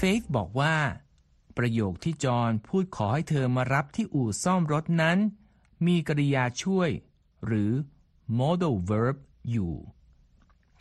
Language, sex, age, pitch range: Thai, male, 60-79, 115-165 Hz